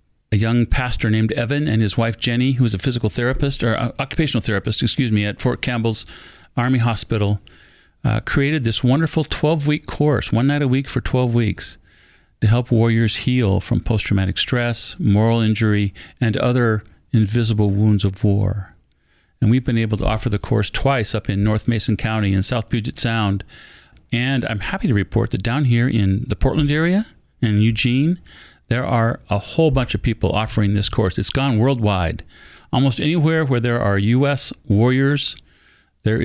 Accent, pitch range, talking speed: American, 105-125 Hz, 175 wpm